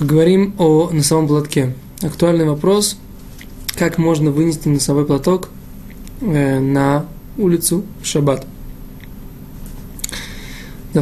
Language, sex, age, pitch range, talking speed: Russian, male, 20-39, 145-170 Hz, 100 wpm